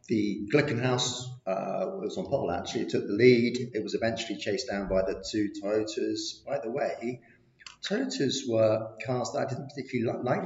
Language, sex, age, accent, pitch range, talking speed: English, male, 40-59, British, 100-140 Hz, 180 wpm